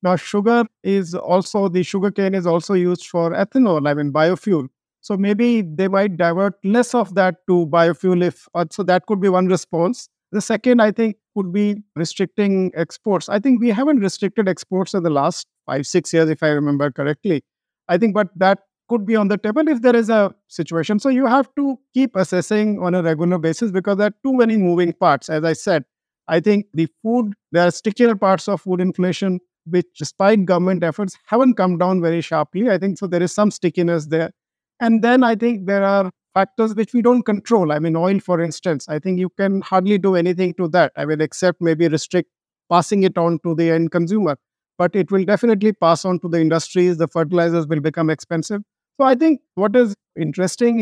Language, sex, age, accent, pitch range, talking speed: English, male, 50-69, Indian, 170-210 Hz, 205 wpm